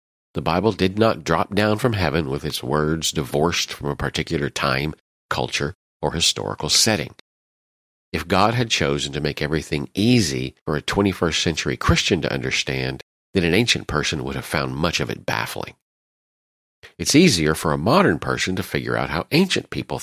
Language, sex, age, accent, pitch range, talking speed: English, male, 50-69, American, 70-90 Hz, 175 wpm